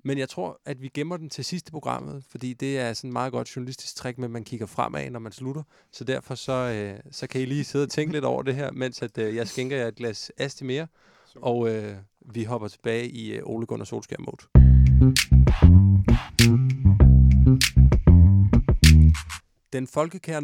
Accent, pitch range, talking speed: native, 110-140 Hz, 185 wpm